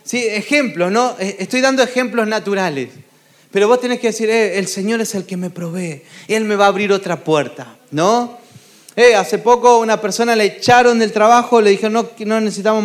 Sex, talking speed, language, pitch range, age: male, 195 wpm, Spanish, 190-240 Hz, 30-49